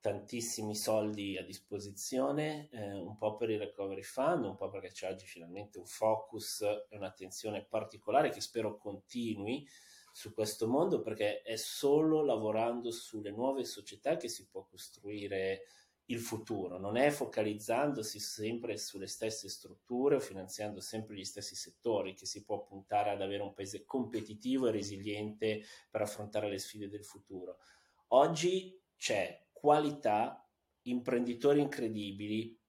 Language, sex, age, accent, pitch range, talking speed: Italian, male, 30-49, native, 105-125 Hz, 140 wpm